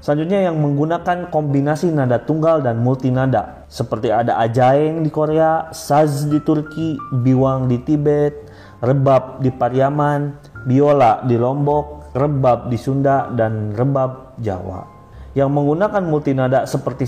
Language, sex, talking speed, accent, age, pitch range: Indonesian, male, 125 wpm, native, 30-49, 125-150 Hz